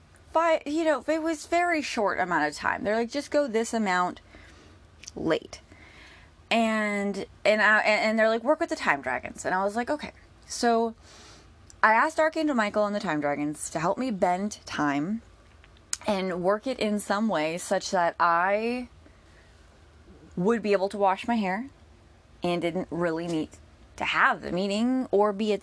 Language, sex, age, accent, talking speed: English, female, 20-39, American, 175 wpm